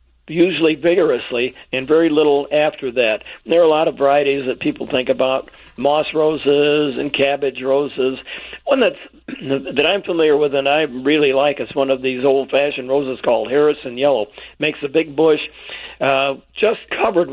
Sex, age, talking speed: male, 60-79, 165 wpm